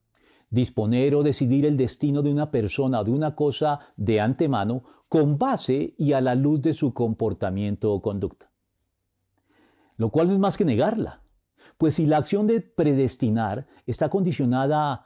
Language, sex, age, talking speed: Spanish, male, 40-59, 160 wpm